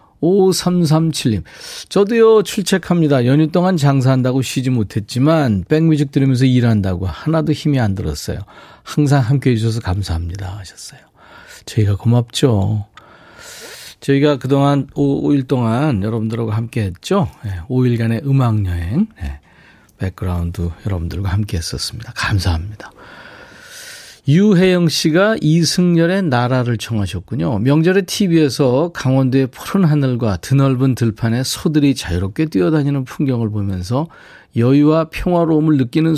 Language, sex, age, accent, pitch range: Korean, male, 40-59, native, 110-155 Hz